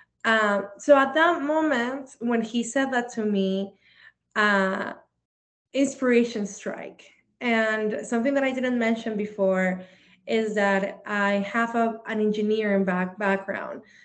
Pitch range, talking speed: 195-235 Hz, 130 wpm